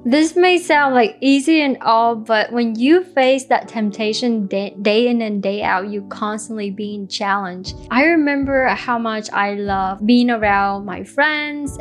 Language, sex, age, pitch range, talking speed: English, female, 20-39, 200-245 Hz, 165 wpm